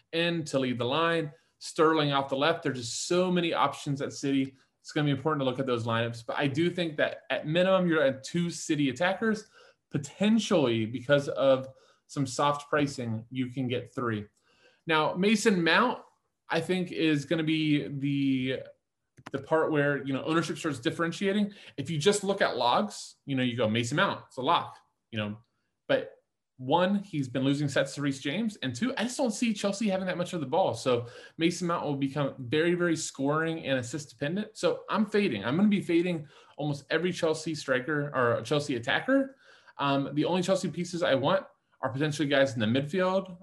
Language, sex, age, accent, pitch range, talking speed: English, male, 20-39, American, 130-175 Hz, 200 wpm